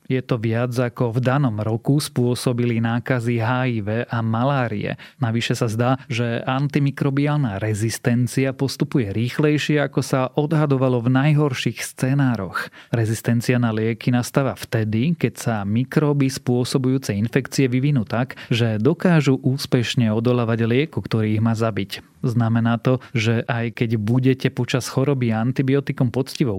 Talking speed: 130 wpm